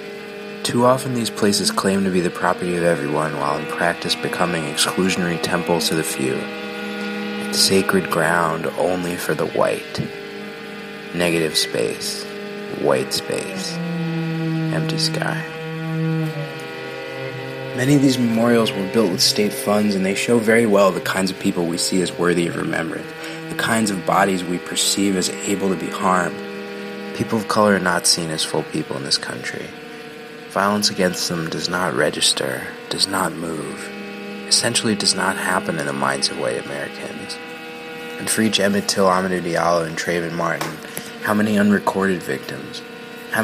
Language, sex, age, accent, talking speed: English, male, 30-49, American, 155 wpm